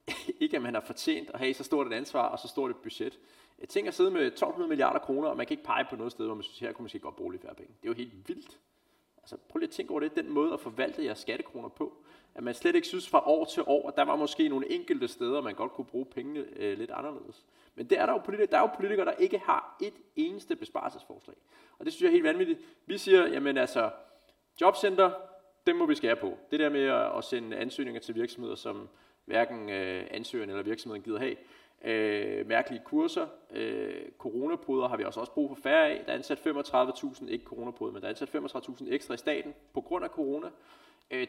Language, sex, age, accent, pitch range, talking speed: Danish, male, 30-49, native, 305-350 Hz, 240 wpm